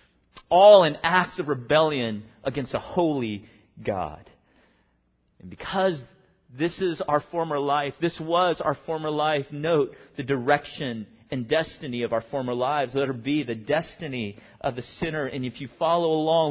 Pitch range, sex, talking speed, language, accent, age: 105-165 Hz, male, 155 wpm, English, American, 40-59